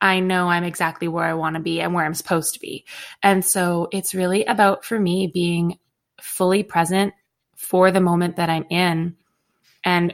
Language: English